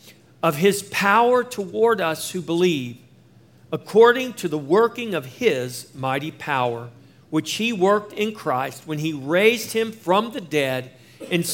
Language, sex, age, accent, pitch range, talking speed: English, male, 50-69, American, 155-215 Hz, 145 wpm